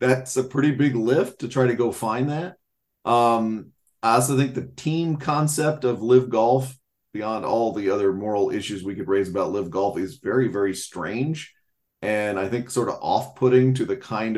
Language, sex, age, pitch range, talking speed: English, male, 40-59, 110-130 Hz, 190 wpm